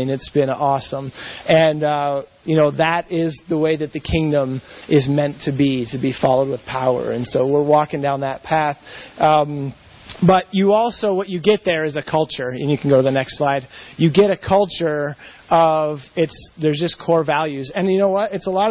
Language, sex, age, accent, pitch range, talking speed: English, male, 30-49, American, 140-180 Hz, 210 wpm